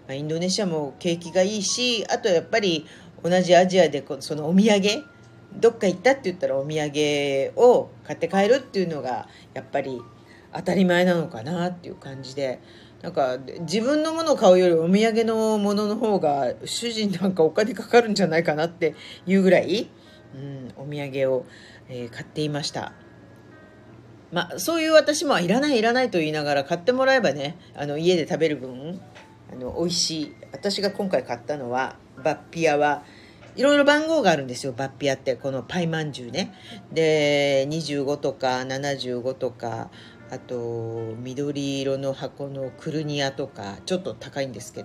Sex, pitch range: female, 135-185 Hz